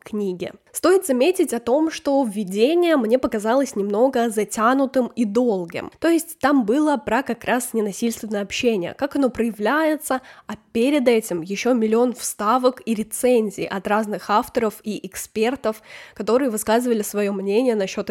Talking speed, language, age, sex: 145 wpm, Russian, 10-29, female